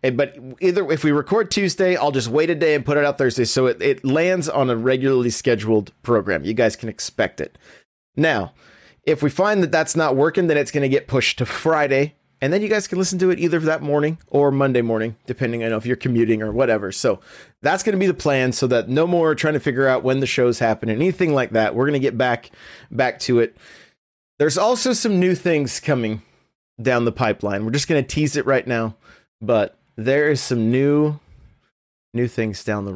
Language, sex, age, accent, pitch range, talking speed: English, male, 30-49, American, 125-185 Hz, 225 wpm